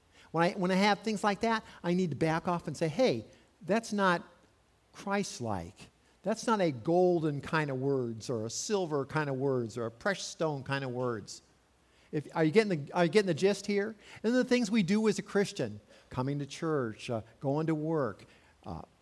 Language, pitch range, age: English, 125-180 Hz, 50-69